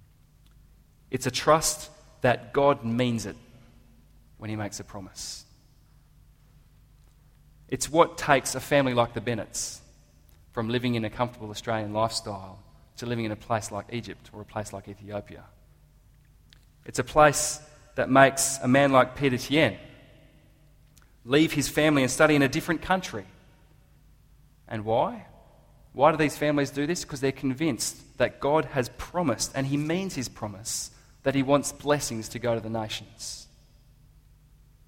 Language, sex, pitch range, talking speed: English, male, 115-140 Hz, 150 wpm